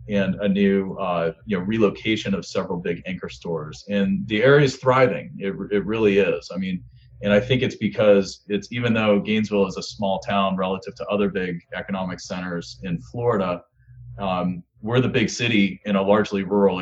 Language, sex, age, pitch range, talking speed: English, male, 30-49, 95-120 Hz, 180 wpm